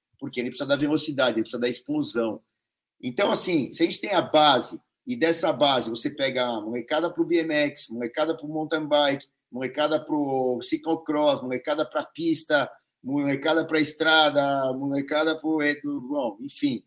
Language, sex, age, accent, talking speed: Portuguese, male, 50-69, Brazilian, 165 wpm